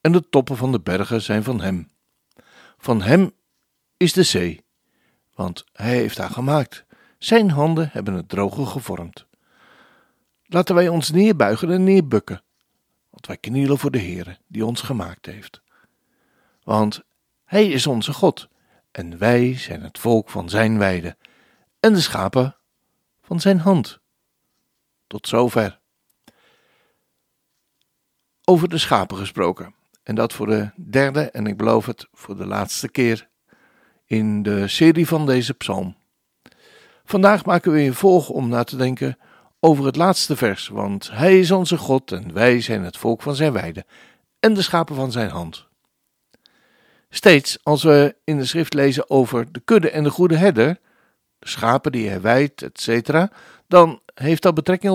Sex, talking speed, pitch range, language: male, 155 wpm, 110-175 Hz, Dutch